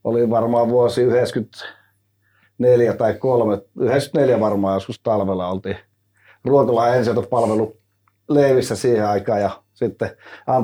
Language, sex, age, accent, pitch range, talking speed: Finnish, male, 30-49, native, 100-120 Hz, 100 wpm